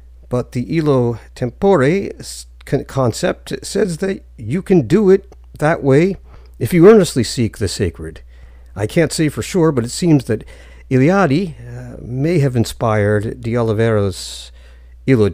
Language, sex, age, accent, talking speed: English, male, 50-69, American, 135 wpm